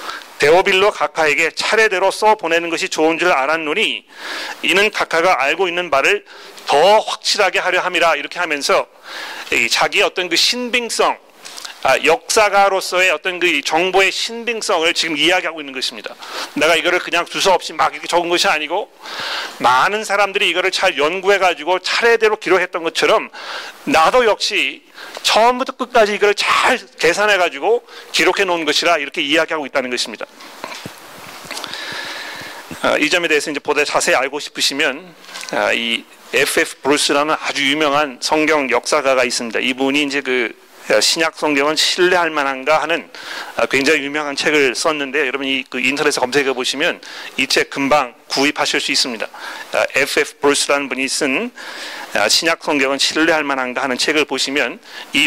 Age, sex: 40-59, male